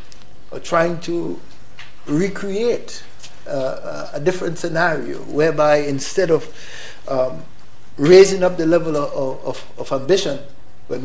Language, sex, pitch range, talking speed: English, male, 130-165 Hz, 110 wpm